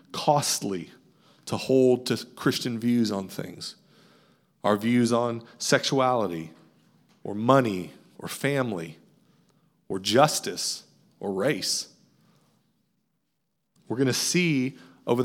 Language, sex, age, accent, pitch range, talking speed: English, male, 40-59, American, 115-155 Hz, 100 wpm